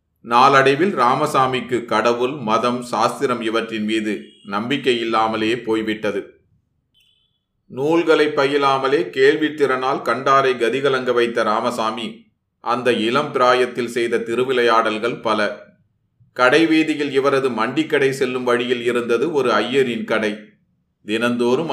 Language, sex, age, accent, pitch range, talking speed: Tamil, male, 30-49, native, 115-135 Hz, 95 wpm